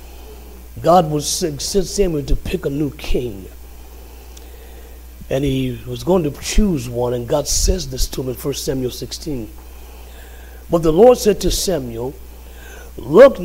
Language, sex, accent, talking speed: English, male, American, 145 wpm